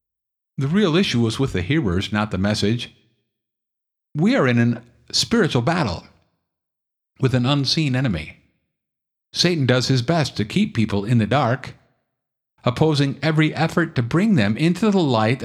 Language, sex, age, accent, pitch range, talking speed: English, male, 50-69, American, 105-155 Hz, 150 wpm